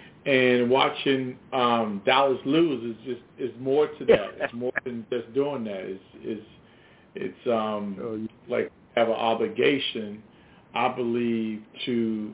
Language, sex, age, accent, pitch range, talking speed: English, male, 40-59, American, 115-135 Hz, 135 wpm